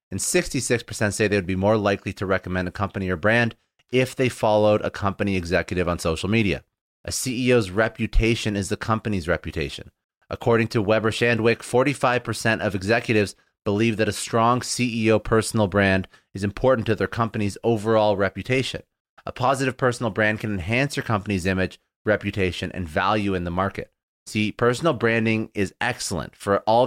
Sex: male